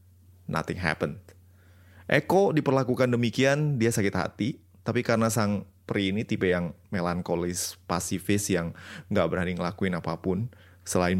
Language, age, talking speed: Indonesian, 20-39, 125 wpm